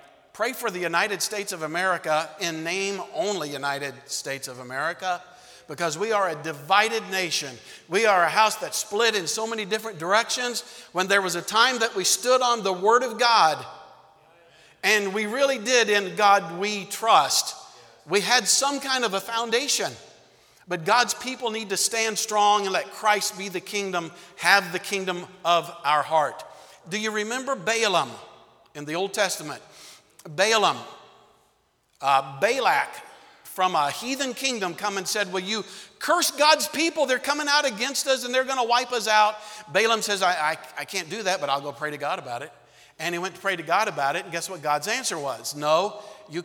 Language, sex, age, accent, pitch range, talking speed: English, male, 50-69, American, 175-245 Hz, 190 wpm